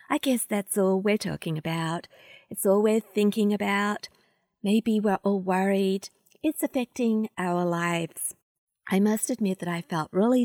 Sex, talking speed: female, 155 wpm